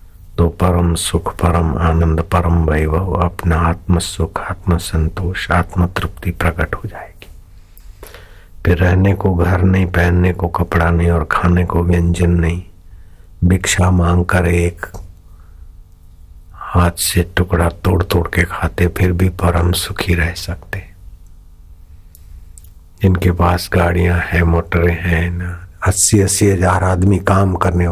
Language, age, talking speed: Hindi, 60-79, 125 wpm